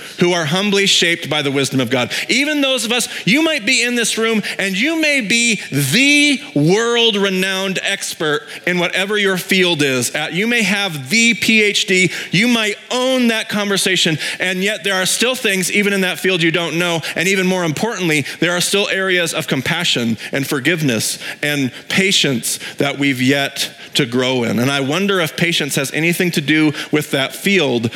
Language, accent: English, American